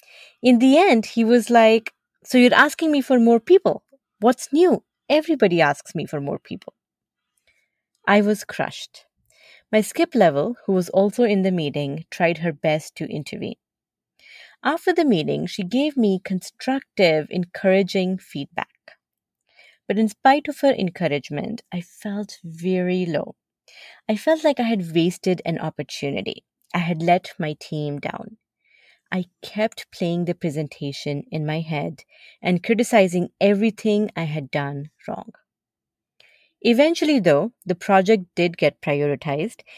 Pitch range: 165-225 Hz